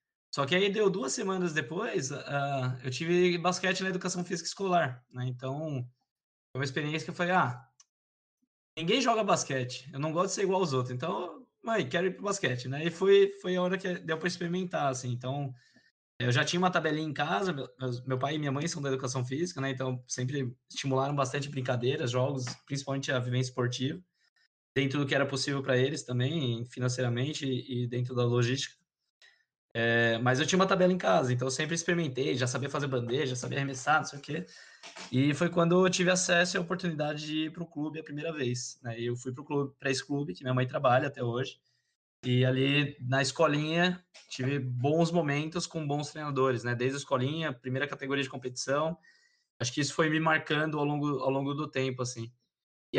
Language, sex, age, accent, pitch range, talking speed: Portuguese, male, 20-39, Brazilian, 130-175 Hz, 205 wpm